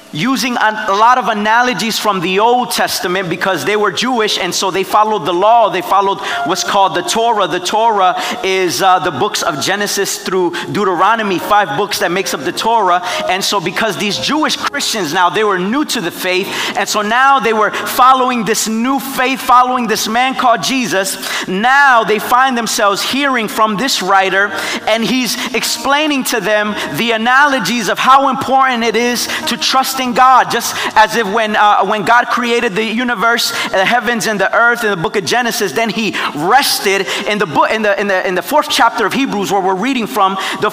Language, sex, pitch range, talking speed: English, male, 205-255 Hz, 200 wpm